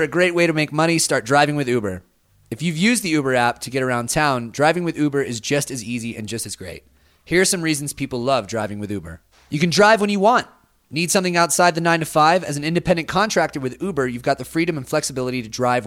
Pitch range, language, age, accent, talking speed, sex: 115-160 Hz, English, 30-49, American, 255 wpm, male